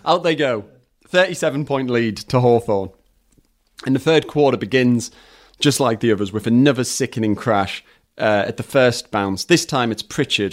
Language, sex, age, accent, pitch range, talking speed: English, male, 30-49, British, 105-140 Hz, 165 wpm